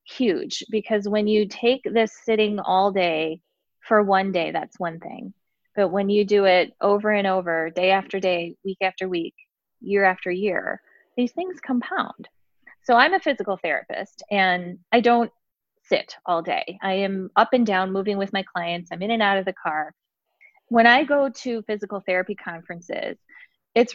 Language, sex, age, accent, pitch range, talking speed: English, female, 20-39, American, 185-225 Hz, 175 wpm